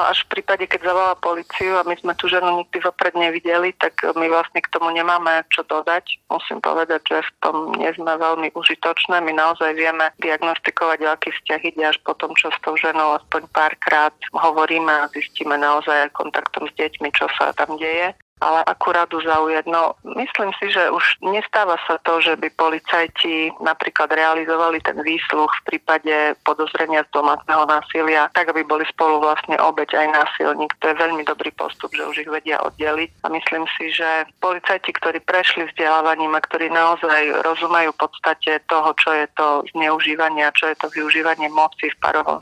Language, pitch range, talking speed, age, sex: Slovak, 155-165 Hz, 175 wpm, 30-49, female